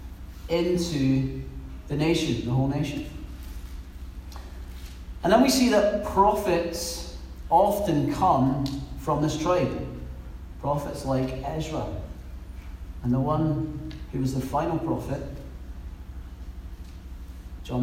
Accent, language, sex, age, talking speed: British, English, male, 30-49, 100 wpm